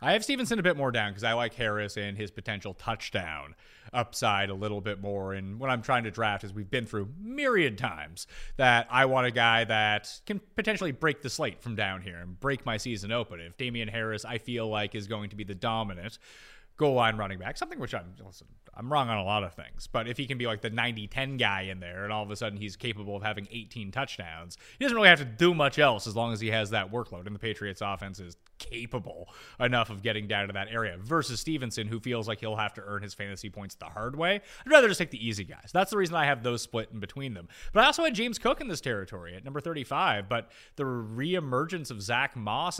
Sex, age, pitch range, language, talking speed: male, 30-49, 105-145 Hz, English, 250 wpm